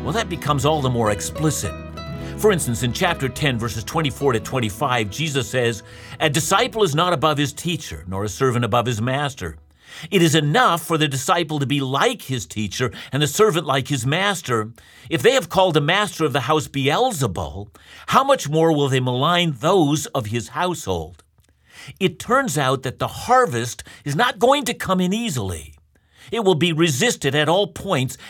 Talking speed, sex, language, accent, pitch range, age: 185 wpm, male, English, American, 115-170 Hz, 50-69